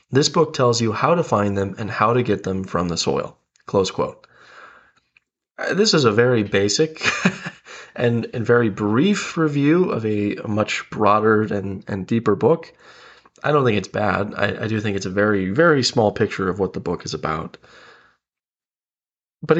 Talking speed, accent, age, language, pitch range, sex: 180 wpm, American, 20-39, English, 105-145 Hz, male